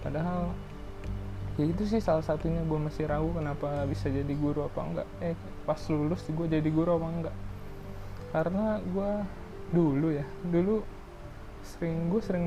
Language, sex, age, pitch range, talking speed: Indonesian, male, 20-39, 140-175 Hz, 150 wpm